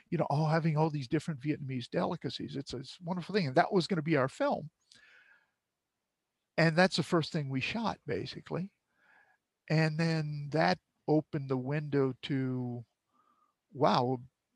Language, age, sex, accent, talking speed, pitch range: English, 50-69, male, American, 155 wpm, 135-165 Hz